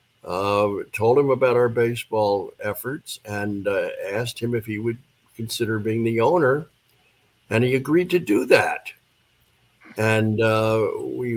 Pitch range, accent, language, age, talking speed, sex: 110-130 Hz, American, English, 60-79, 145 wpm, male